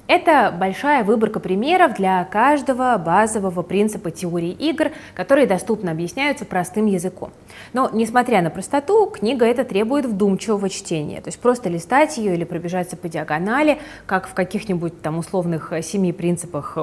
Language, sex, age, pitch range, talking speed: Russian, female, 20-39, 170-225 Hz, 145 wpm